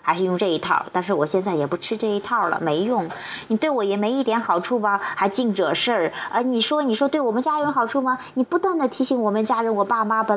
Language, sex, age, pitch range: Chinese, female, 20-39, 170-225 Hz